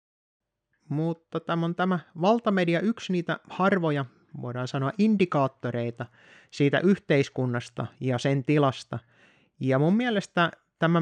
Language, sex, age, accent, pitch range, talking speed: Finnish, male, 20-39, native, 130-175 Hz, 110 wpm